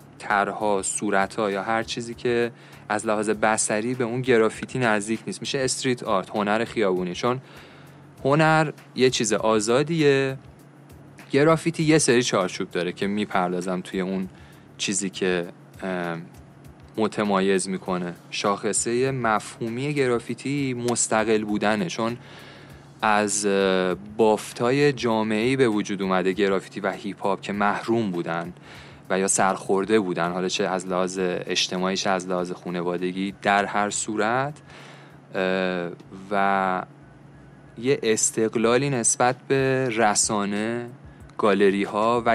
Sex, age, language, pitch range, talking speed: male, 30-49, Persian, 100-130 Hz, 115 wpm